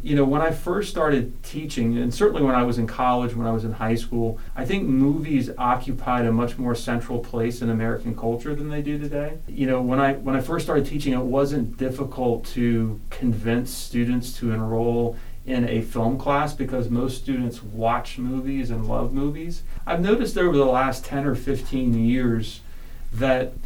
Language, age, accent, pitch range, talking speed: English, 30-49, American, 115-135 Hz, 190 wpm